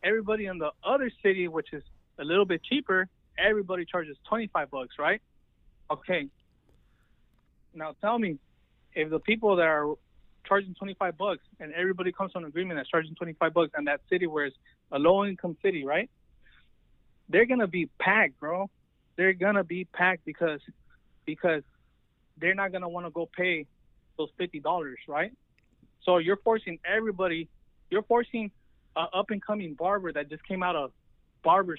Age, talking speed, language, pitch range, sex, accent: 20-39, 170 wpm, English, 150-185 Hz, male, American